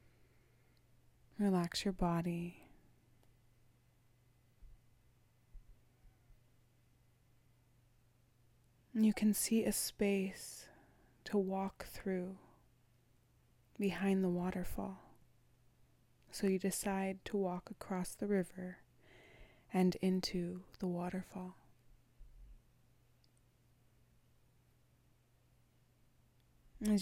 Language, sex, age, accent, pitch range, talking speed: English, female, 20-39, American, 120-190 Hz, 60 wpm